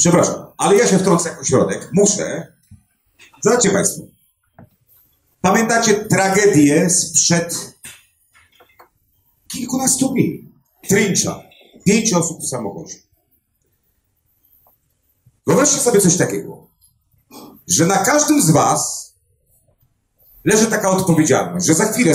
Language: Polish